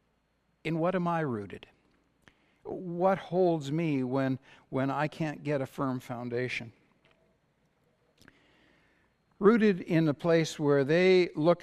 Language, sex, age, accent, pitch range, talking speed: English, male, 60-79, American, 115-160 Hz, 120 wpm